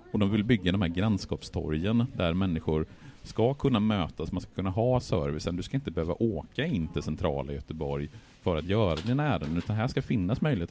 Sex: male